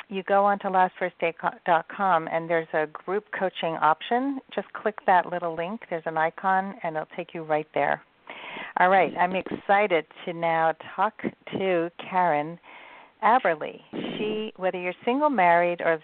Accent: American